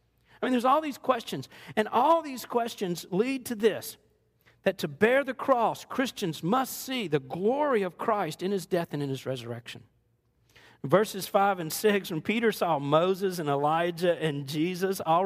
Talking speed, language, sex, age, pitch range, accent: 175 wpm, English, male, 50-69, 170-245 Hz, American